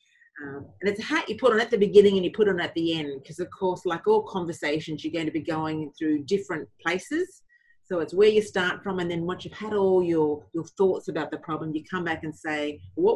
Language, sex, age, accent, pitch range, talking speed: English, female, 40-59, Australian, 155-225 Hz, 260 wpm